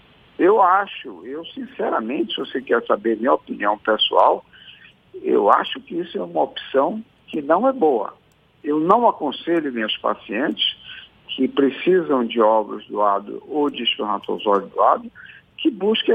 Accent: Brazilian